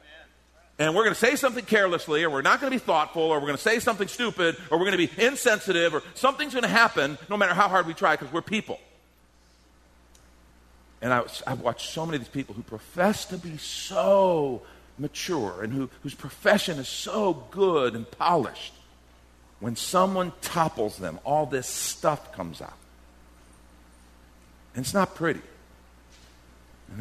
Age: 50-69